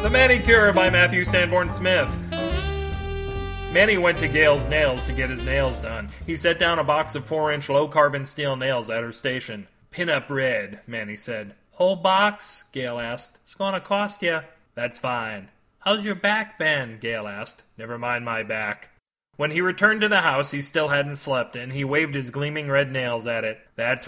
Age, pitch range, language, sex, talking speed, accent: 30-49, 115-150 Hz, English, male, 180 wpm, American